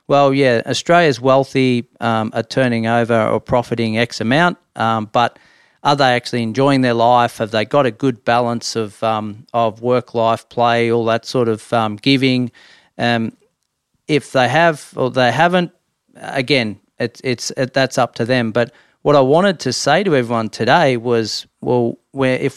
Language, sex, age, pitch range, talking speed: English, male, 40-59, 115-135 Hz, 175 wpm